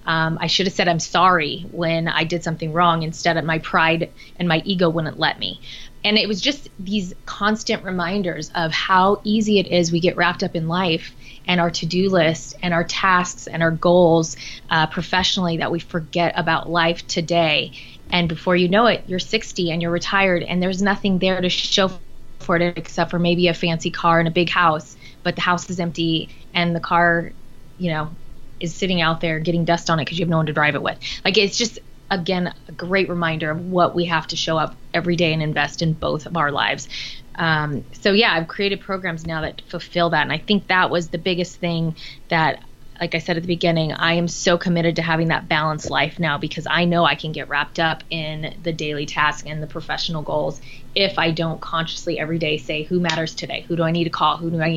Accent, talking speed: American, 225 wpm